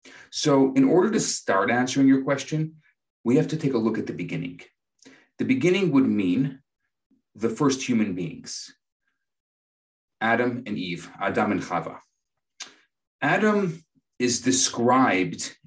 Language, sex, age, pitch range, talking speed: English, male, 40-59, 115-155 Hz, 130 wpm